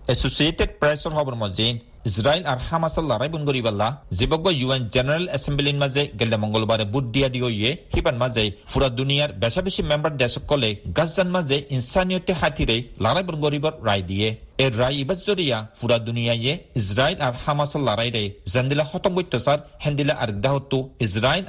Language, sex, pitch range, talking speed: Bengali, male, 120-160 Hz, 45 wpm